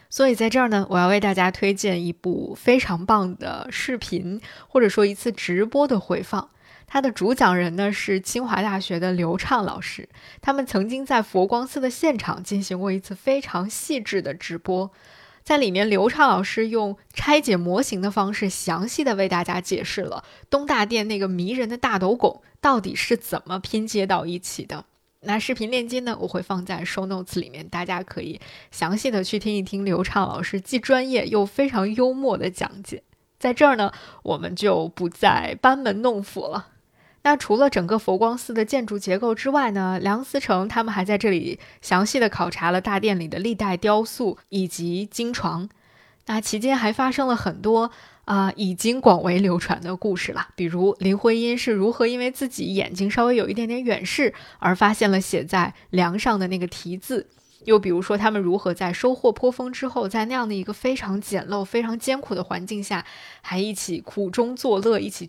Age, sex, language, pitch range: 20-39, female, Chinese, 185-235 Hz